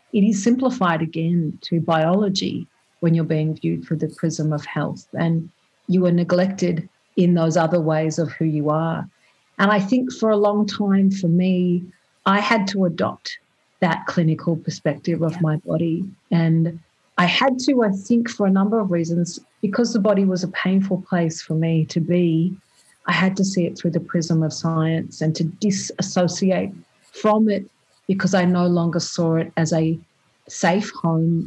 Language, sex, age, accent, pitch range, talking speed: English, female, 50-69, Australian, 165-195 Hz, 175 wpm